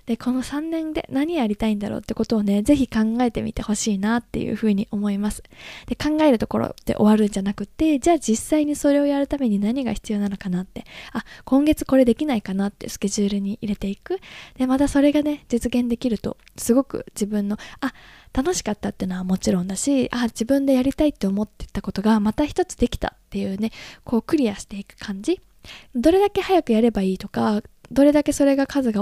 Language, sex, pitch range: Japanese, female, 210-285 Hz